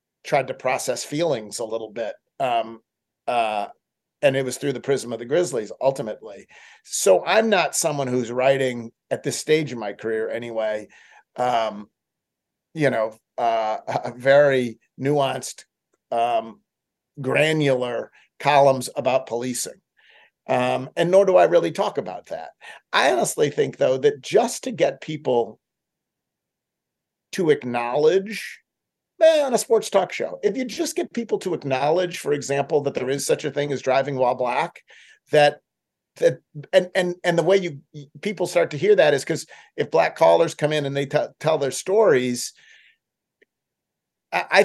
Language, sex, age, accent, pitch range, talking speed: English, male, 40-59, American, 125-185 Hz, 155 wpm